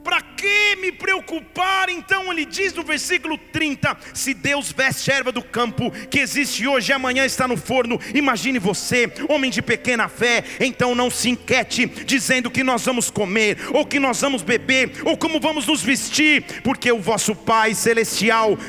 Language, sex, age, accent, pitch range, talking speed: Portuguese, male, 40-59, Brazilian, 245-290 Hz, 175 wpm